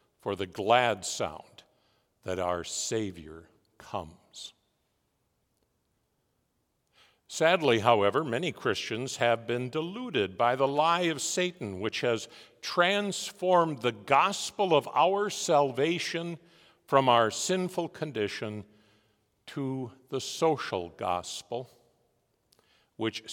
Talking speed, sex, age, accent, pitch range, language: 95 wpm, male, 50-69, American, 115-155 Hz, English